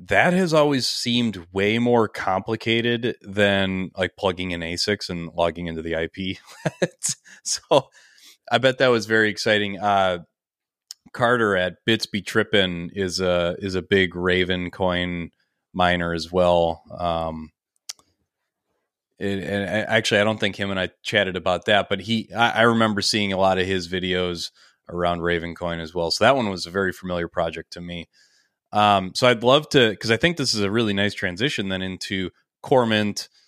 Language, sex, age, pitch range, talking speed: English, male, 30-49, 90-105 Hz, 170 wpm